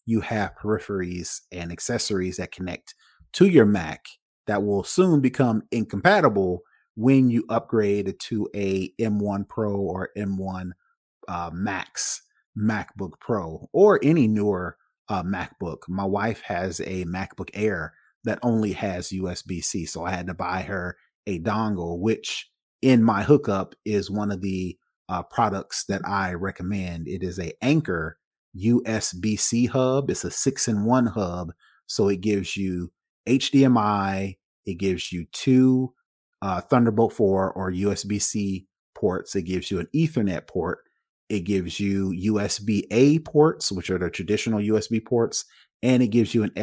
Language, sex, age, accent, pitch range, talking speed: English, male, 30-49, American, 95-115 Hz, 145 wpm